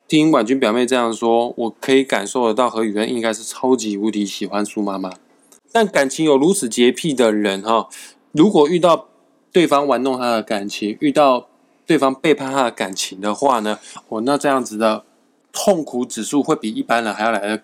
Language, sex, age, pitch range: Chinese, male, 20-39, 110-155 Hz